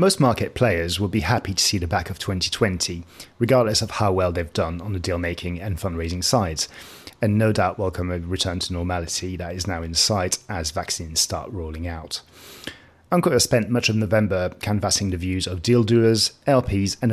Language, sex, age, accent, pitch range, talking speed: English, male, 30-49, British, 90-110 Hz, 195 wpm